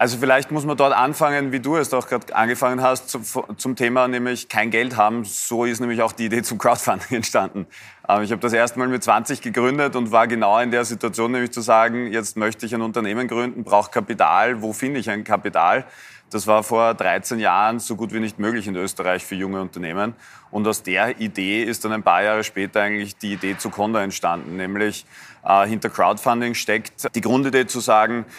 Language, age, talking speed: German, 30-49, 205 wpm